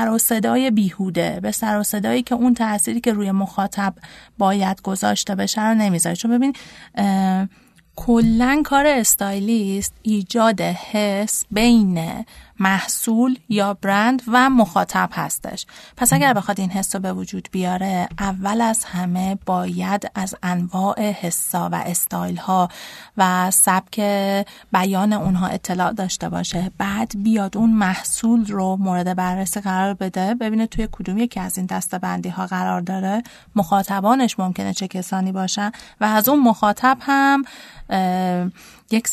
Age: 30-49